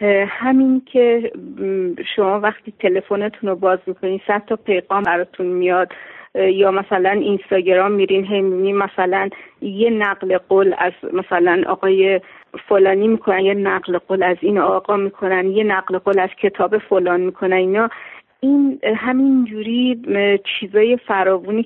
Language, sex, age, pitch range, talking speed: Persian, female, 40-59, 190-230 Hz, 125 wpm